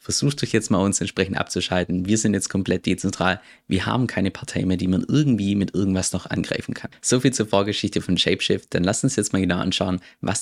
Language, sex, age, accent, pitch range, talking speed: German, male, 20-39, German, 90-110 Hz, 225 wpm